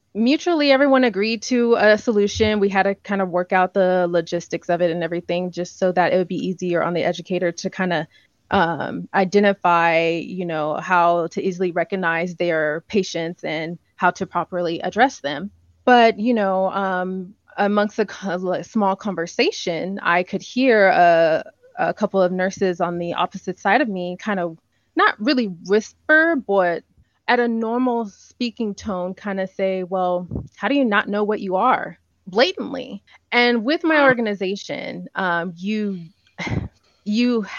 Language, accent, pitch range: English, American, 180-225 Hz